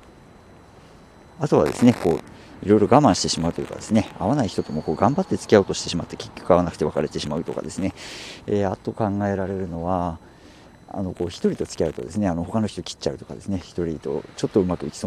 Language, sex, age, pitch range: Japanese, male, 50-69, 90-110 Hz